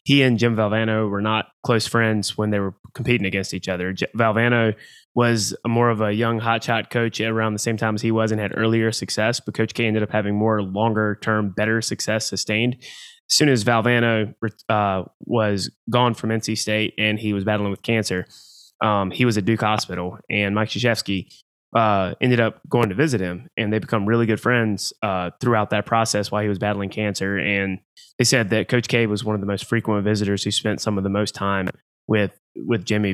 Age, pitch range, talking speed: 20-39, 100-115 Hz, 210 wpm